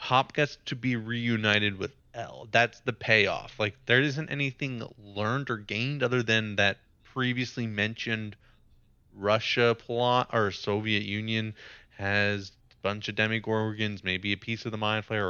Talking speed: 155 wpm